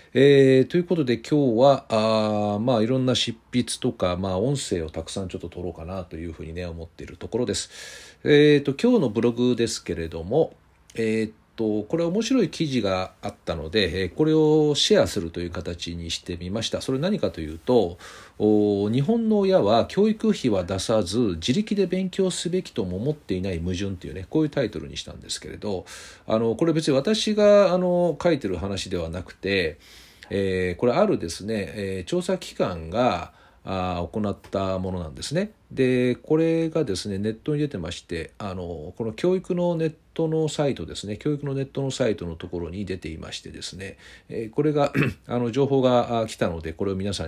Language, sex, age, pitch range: Japanese, male, 40-59, 95-150 Hz